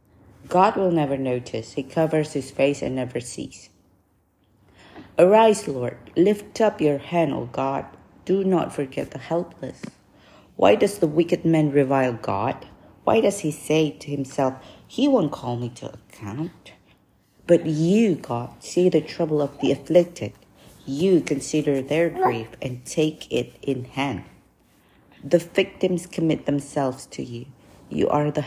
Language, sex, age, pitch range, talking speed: English, female, 40-59, 125-155 Hz, 150 wpm